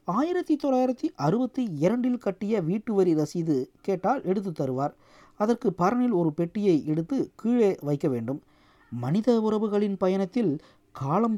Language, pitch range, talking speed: Tamil, 160-225 Hz, 115 wpm